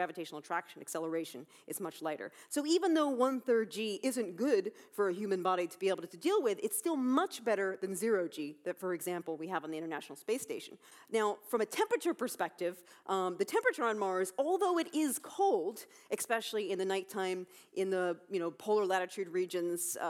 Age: 40-59